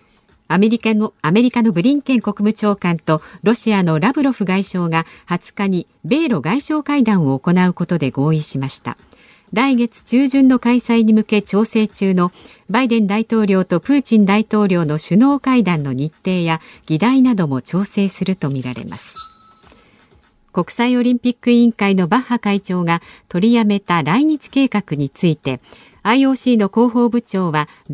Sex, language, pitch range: female, Japanese, 175-240 Hz